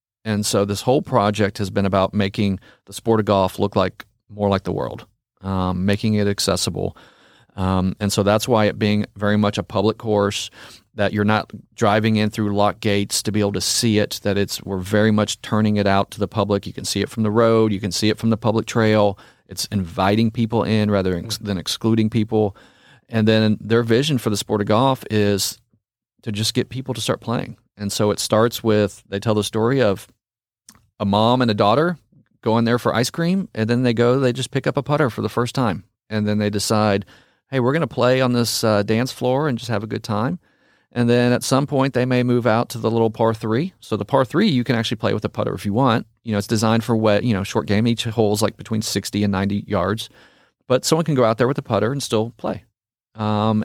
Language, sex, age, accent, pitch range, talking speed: English, male, 40-59, American, 105-120 Hz, 240 wpm